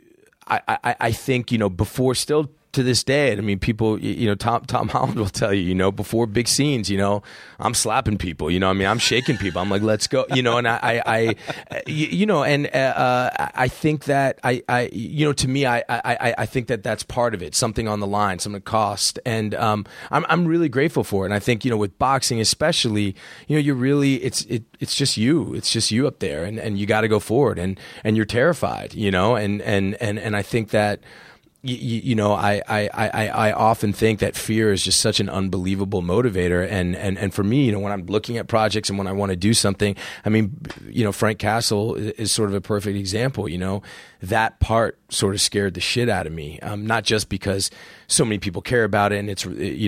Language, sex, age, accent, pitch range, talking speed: English, male, 30-49, American, 100-120 Hz, 240 wpm